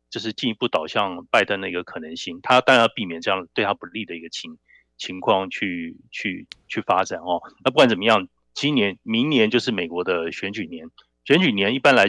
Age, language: 30-49, Chinese